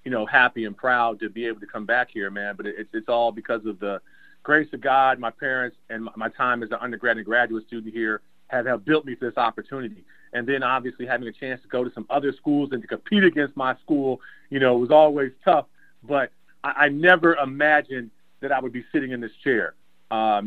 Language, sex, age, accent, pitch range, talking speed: English, male, 40-59, American, 120-150 Hz, 235 wpm